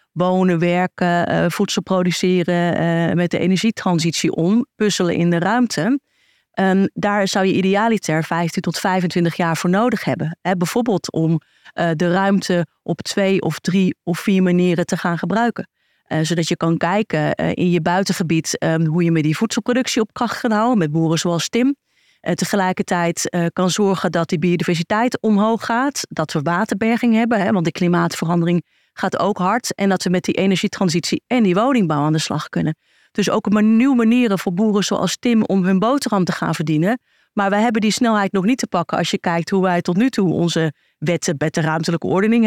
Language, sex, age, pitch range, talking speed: Dutch, female, 30-49, 170-215 Hz, 175 wpm